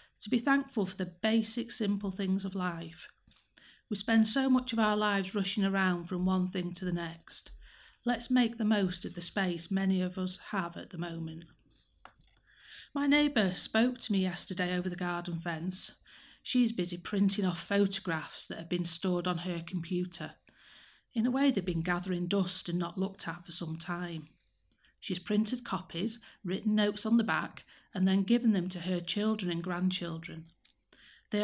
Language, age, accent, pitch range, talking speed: English, 40-59, British, 175-215 Hz, 180 wpm